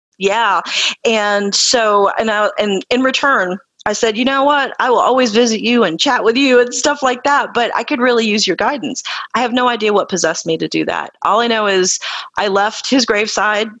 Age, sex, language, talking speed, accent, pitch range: 30-49, female, English, 220 wpm, American, 190-245 Hz